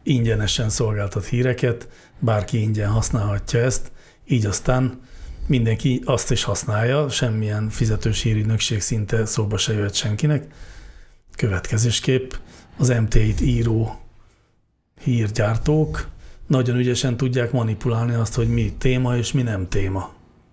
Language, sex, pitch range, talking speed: Hungarian, male, 110-125 Hz, 110 wpm